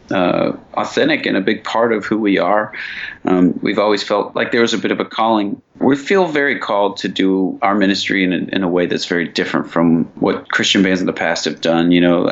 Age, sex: 30-49, male